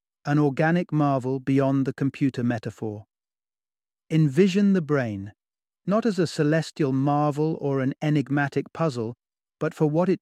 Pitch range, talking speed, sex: 130-160 Hz, 135 wpm, male